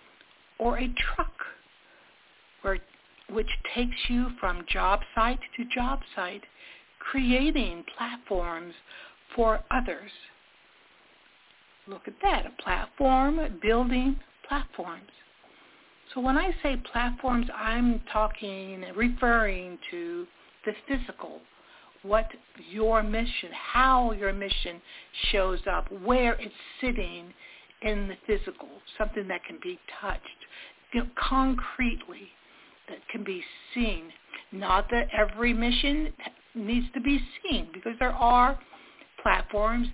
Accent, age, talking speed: American, 60-79, 105 wpm